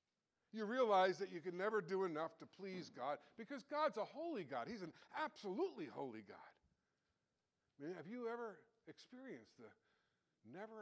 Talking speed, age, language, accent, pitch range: 150 wpm, 60-79, English, American, 145-210 Hz